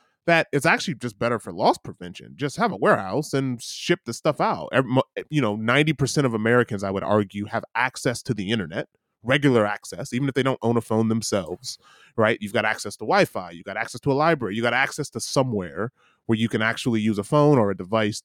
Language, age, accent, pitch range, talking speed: English, 30-49, American, 105-135 Hz, 225 wpm